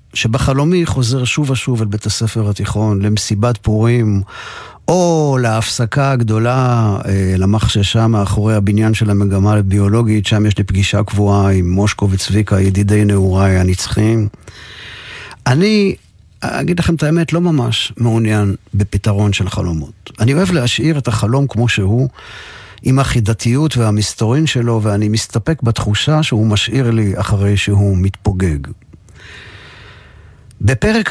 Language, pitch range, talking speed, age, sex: Hebrew, 100-130 Hz, 120 wpm, 50-69, male